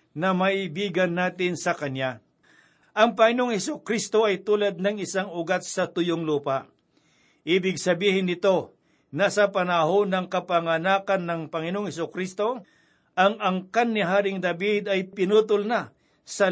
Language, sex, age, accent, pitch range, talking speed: Filipino, male, 60-79, native, 170-205 Hz, 130 wpm